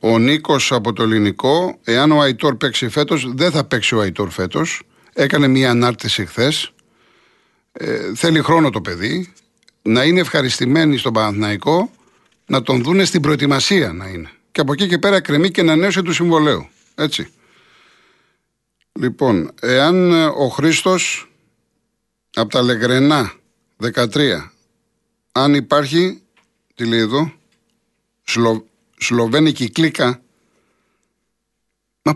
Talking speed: 125 wpm